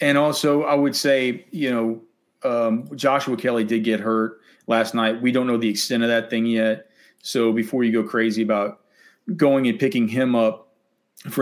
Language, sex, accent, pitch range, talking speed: English, male, American, 105-135 Hz, 190 wpm